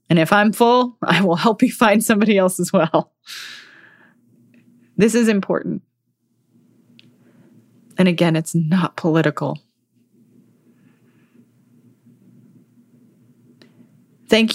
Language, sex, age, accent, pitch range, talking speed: English, female, 20-39, American, 165-200 Hz, 90 wpm